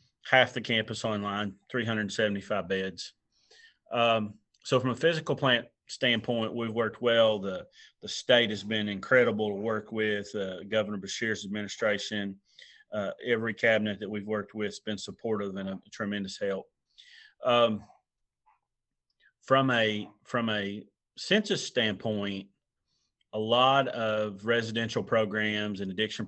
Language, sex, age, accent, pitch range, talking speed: English, male, 30-49, American, 100-115 Hz, 130 wpm